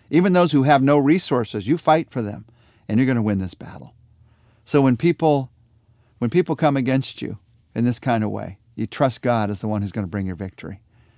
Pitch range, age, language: 110-175 Hz, 50-69, English